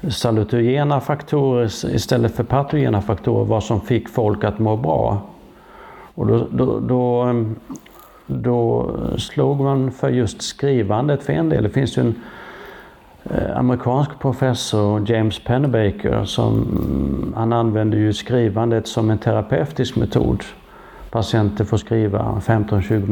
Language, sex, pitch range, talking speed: English, male, 110-130 Hz, 120 wpm